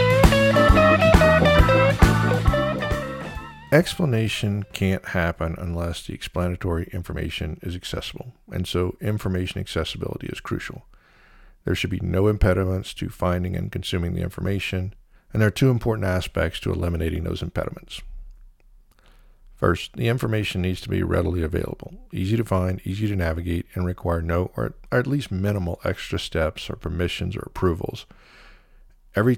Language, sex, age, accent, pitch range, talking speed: English, male, 50-69, American, 90-110 Hz, 130 wpm